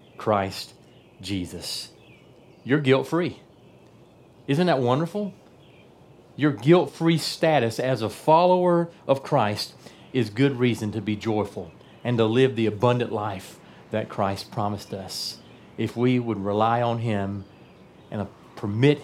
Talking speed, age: 130 wpm, 40-59